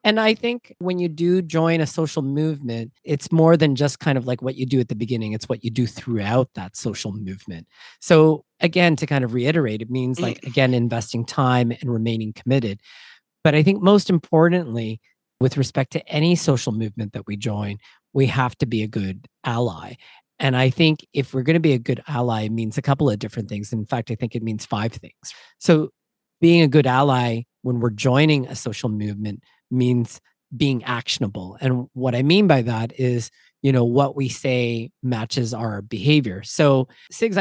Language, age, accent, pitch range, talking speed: English, 40-59, American, 120-160 Hz, 200 wpm